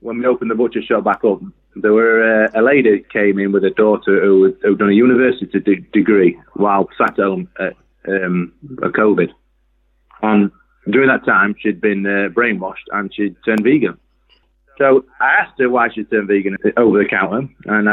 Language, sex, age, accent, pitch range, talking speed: English, male, 30-49, British, 100-115 Hz, 185 wpm